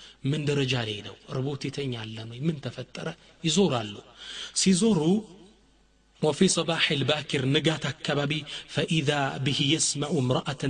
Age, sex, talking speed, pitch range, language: 30-49, male, 105 wpm, 125-170 Hz, Amharic